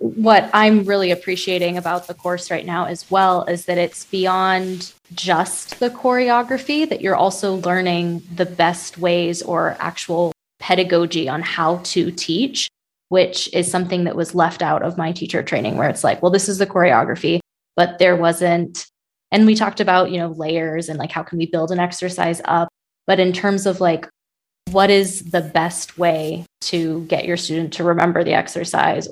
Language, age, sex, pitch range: English, 20-39, female, 170-185 Hz